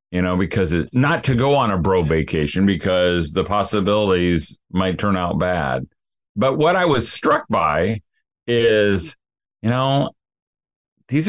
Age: 40-59